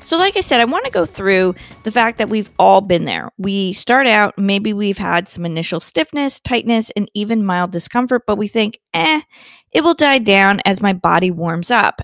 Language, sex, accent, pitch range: English, female, American, 190-245 Hz